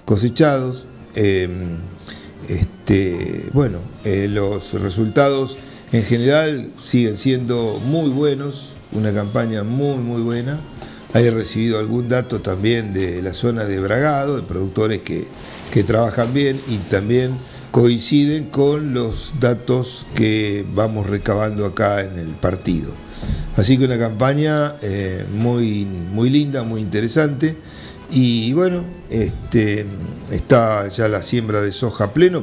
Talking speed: 125 wpm